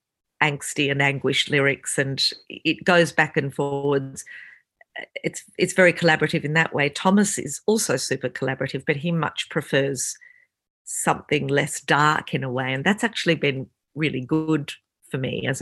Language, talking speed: English, 160 wpm